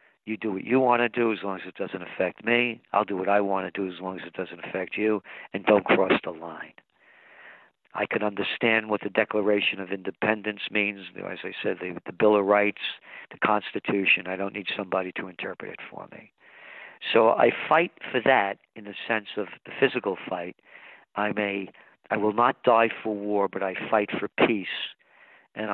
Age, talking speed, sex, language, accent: 50-69, 200 wpm, male, English, American